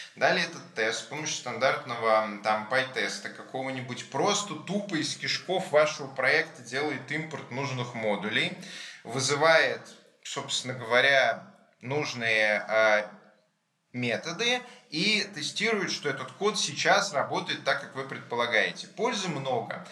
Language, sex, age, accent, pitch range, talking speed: Russian, male, 20-39, native, 115-160 Hz, 115 wpm